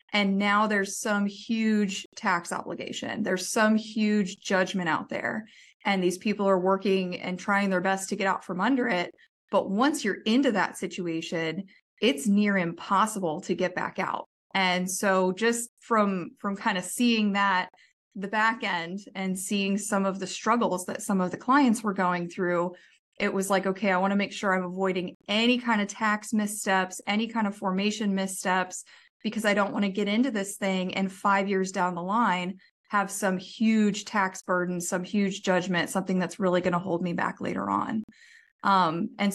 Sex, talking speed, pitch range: female, 190 wpm, 185-215 Hz